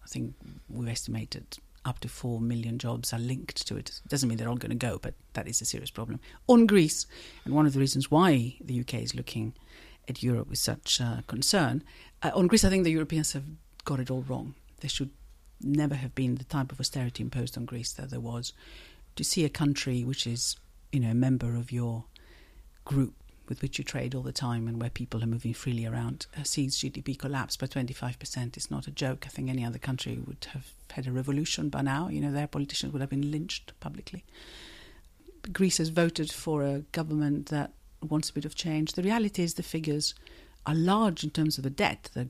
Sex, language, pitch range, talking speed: female, English, 125-150 Hz, 215 wpm